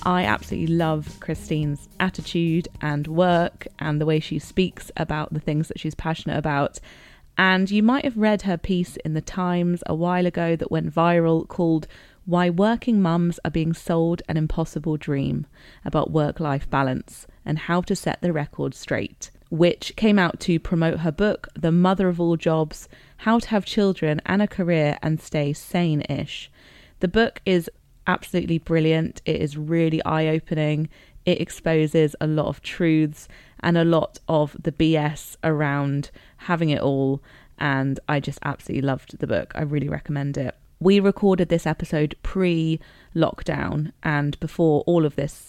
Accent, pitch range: British, 150-180 Hz